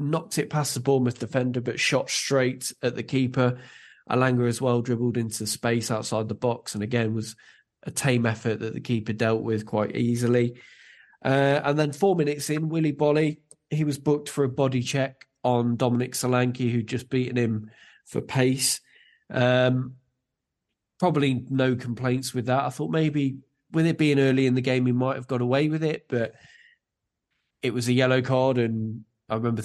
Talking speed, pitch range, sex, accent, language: 180 wpm, 120-140 Hz, male, British, English